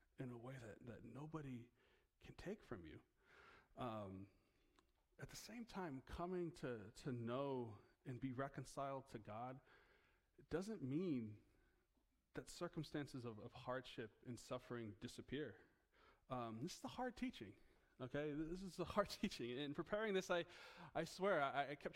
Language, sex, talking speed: English, male, 155 wpm